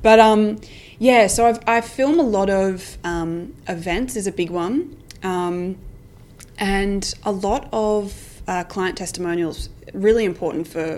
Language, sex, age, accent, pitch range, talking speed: English, female, 20-39, Australian, 170-205 Hz, 140 wpm